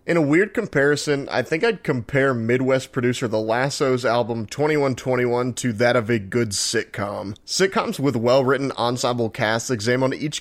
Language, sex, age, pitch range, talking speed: English, male, 30-49, 120-150 Hz, 155 wpm